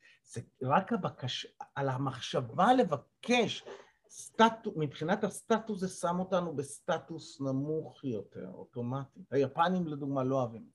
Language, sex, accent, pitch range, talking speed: Hebrew, male, native, 115-145 Hz, 115 wpm